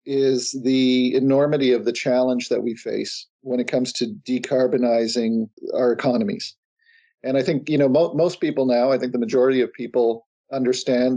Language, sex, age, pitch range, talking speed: English, male, 40-59, 120-140 Hz, 165 wpm